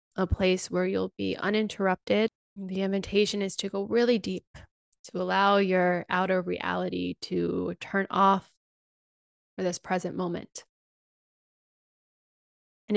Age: 20-39